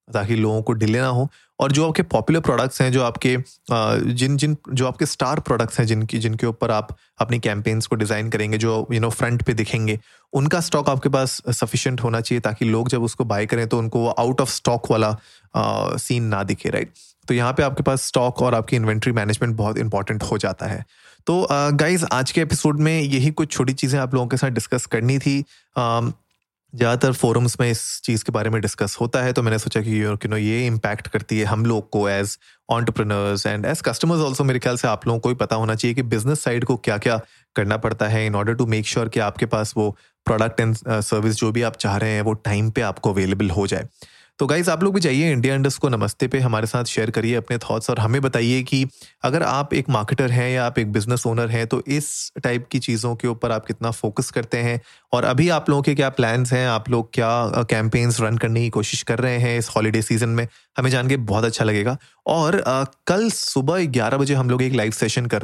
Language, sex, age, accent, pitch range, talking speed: Hindi, male, 30-49, native, 110-130 Hz, 230 wpm